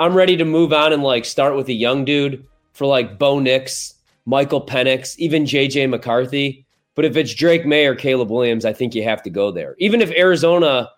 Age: 20-39